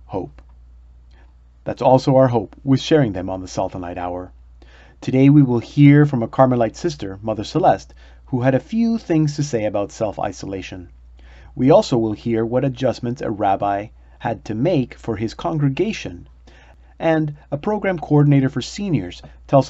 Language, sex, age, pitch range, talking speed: English, male, 30-49, 90-135 Hz, 160 wpm